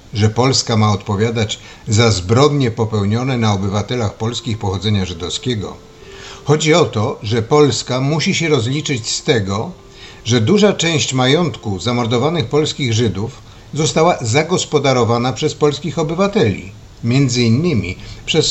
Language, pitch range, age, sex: Polish, 105-140 Hz, 50-69, male